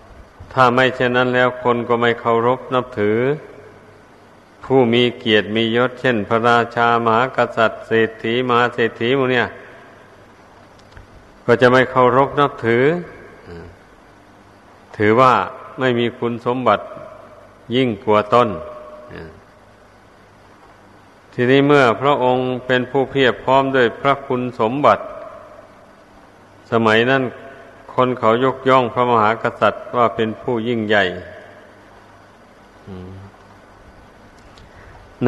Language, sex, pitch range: Thai, male, 100-125 Hz